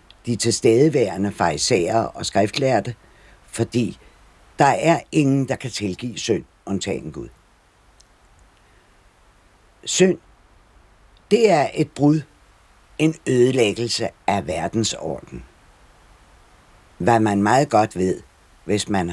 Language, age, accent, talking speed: Danish, 60-79, native, 95 wpm